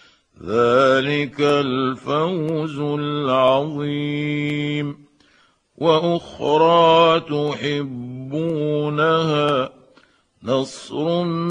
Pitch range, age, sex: 120-145 Hz, 50-69, male